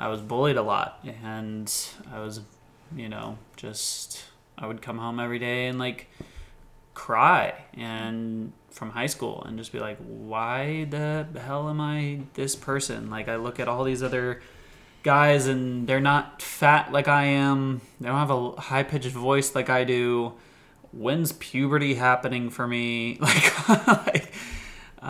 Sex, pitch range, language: male, 110-135 Hz, English